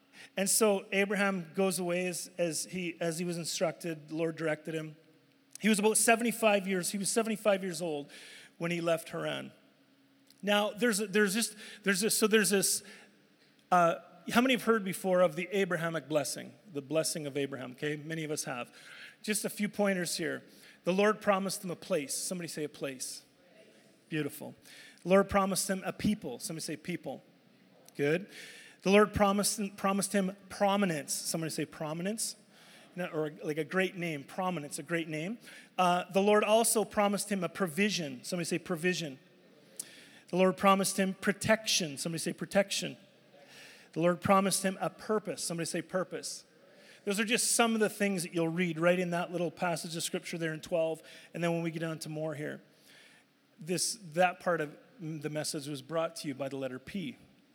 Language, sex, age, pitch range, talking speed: English, male, 40-59, 160-205 Hz, 180 wpm